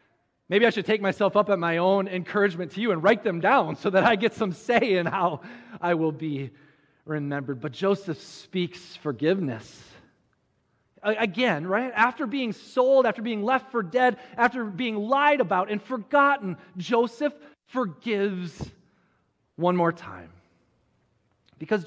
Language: English